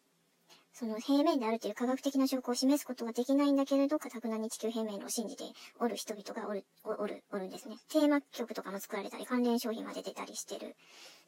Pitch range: 220-260 Hz